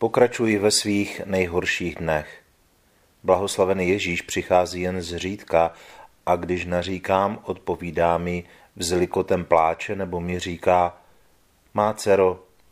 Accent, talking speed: native, 110 wpm